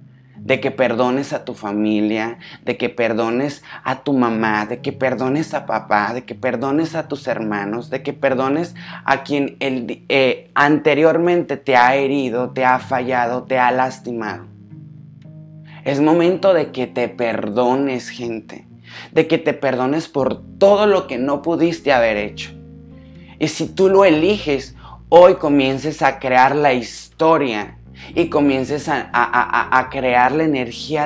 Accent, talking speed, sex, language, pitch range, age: Mexican, 145 wpm, male, Spanish, 125-155 Hz, 30-49